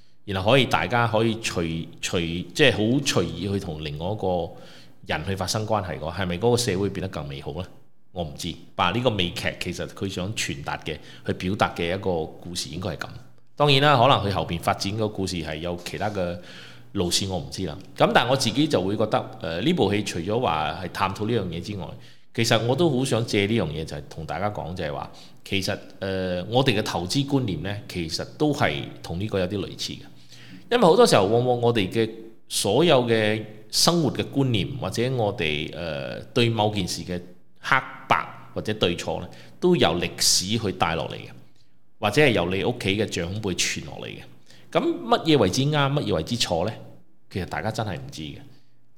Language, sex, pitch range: Chinese, male, 90-120 Hz